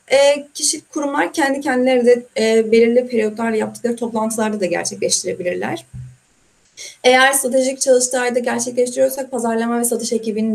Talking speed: 125 wpm